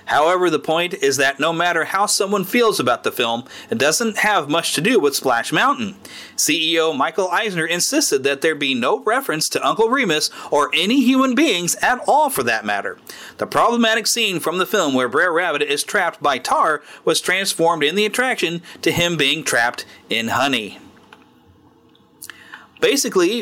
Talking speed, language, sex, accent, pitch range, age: 175 wpm, English, male, American, 150-225 Hz, 40-59